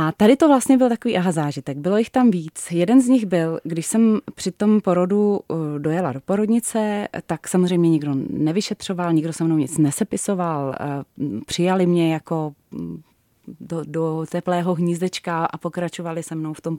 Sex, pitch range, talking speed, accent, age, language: female, 150-205 Hz, 165 wpm, native, 30-49, Czech